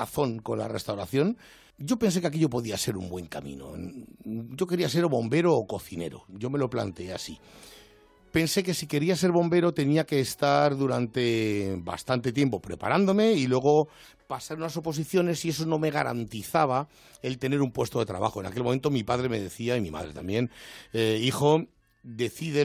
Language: Spanish